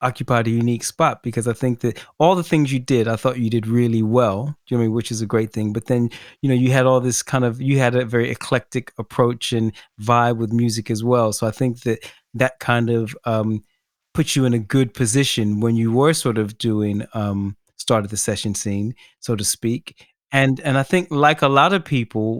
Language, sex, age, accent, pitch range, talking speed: English, male, 30-49, American, 115-130 Hz, 240 wpm